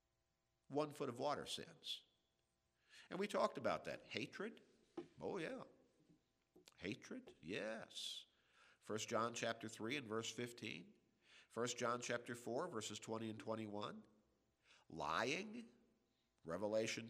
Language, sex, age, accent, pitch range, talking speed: English, male, 50-69, American, 105-125 Hz, 110 wpm